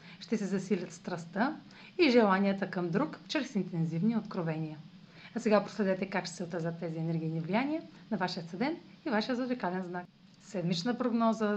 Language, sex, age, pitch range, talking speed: Bulgarian, female, 40-59, 180-230 Hz, 150 wpm